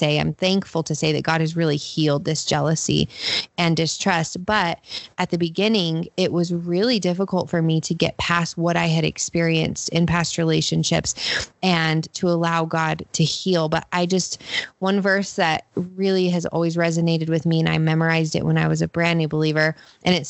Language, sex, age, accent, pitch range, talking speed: English, female, 20-39, American, 160-180 Hz, 190 wpm